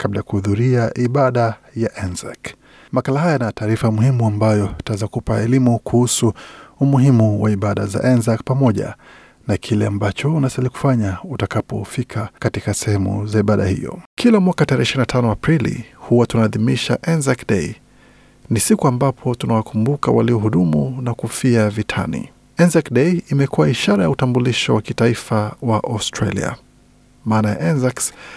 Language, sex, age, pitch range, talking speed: Swahili, male, 50-69, 110-130 Hz, 125 wpm